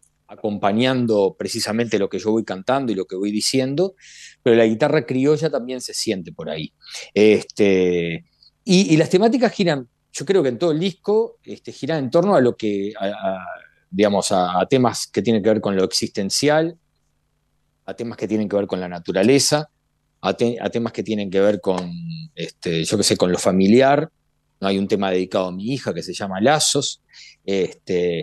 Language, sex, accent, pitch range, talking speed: Spanish, male, Argentinian, 100-150 Hz, 195 wpm